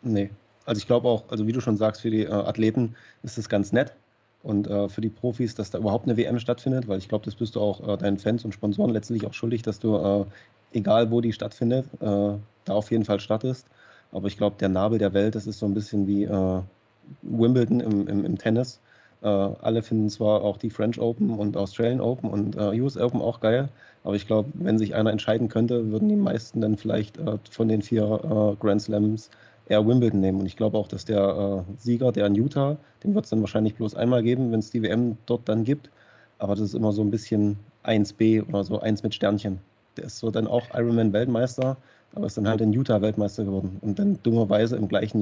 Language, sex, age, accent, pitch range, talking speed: German, male, 30-49, German, 105-120 Hz, 230 wpm